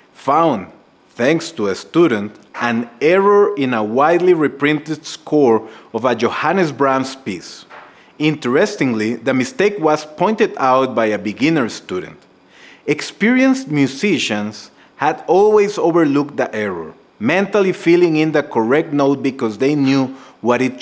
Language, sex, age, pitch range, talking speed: English, male, 30-49, 115-155 Hz, 130 wpm